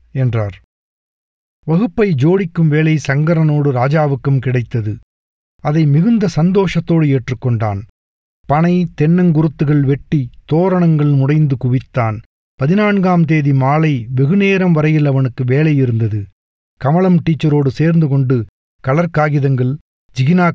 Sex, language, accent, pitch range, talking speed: male, Tamil, native, 130-170 Hz, 90 wpm